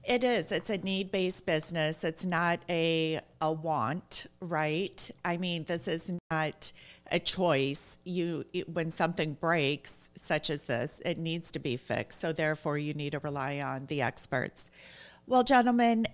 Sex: female